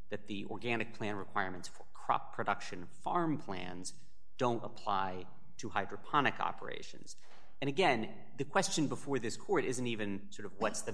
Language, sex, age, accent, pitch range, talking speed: English, male, 30-49, American, 100-115 Hz, 155 wpm